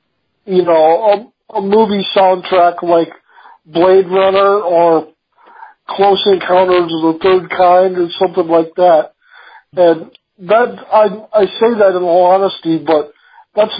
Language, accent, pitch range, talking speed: English, American, 175-210 Hz, 135 wpm